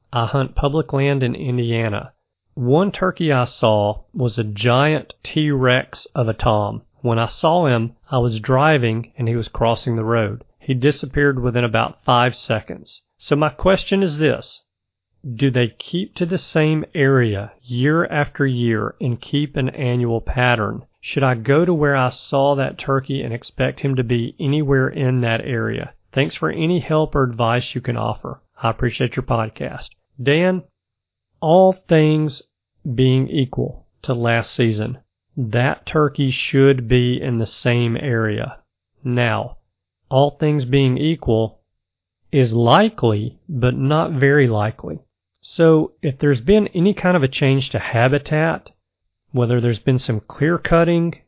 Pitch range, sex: 115-145 Hz, male